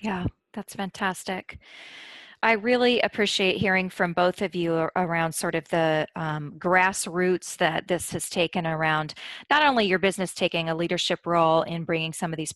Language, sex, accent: English, female, American